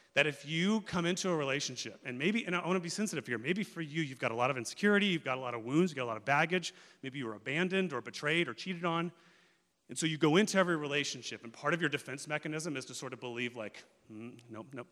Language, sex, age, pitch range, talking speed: English, male, 30-49, 125-170 Hz, 275 wpm